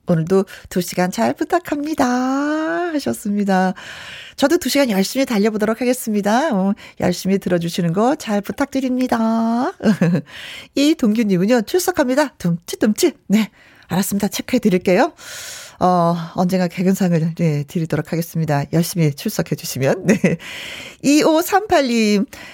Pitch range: 190-295 Hz